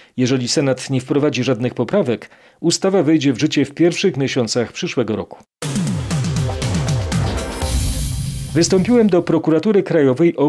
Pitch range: 130-160 Hz